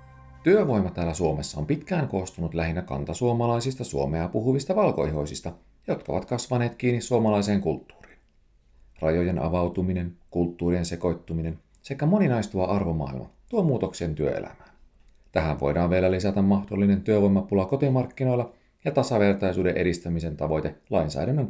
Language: Finnish